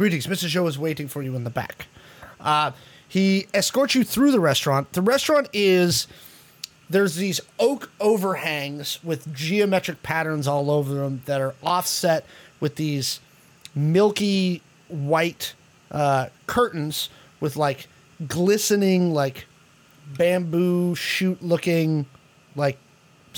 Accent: American